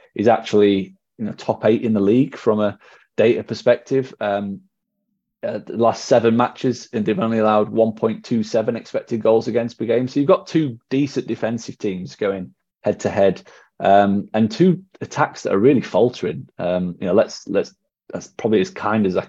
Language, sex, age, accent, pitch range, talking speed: English, male, 20-39, British, 100-125 Hz, 185 wpm